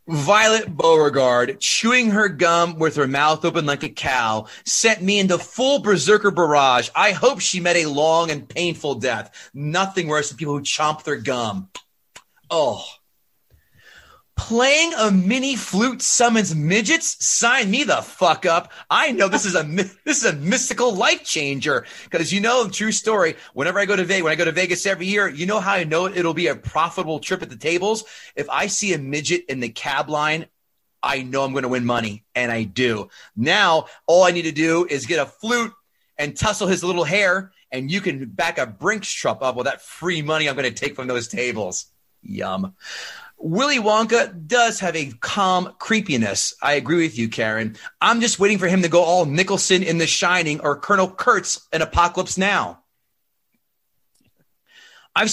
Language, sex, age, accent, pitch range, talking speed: English, male, 30-49, American, 145-200 Hz, 190 wpm